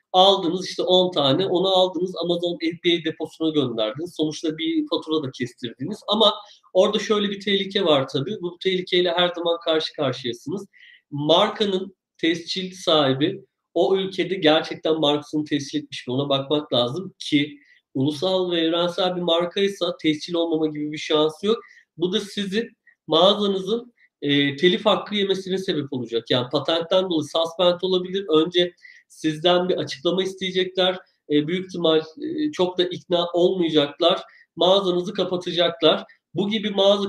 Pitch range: 155-190 Hz